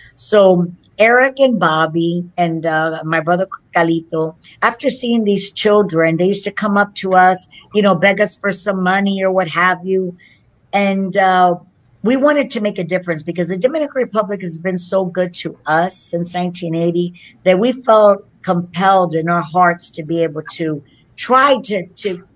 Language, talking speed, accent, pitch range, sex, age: English, 175 wpm, American, 170-210 Hz, female, 50-69